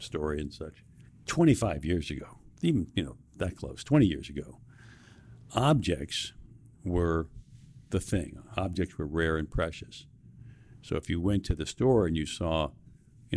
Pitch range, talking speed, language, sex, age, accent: 90-115 Hz, 155 wpm, Finnish, male, 60-79, American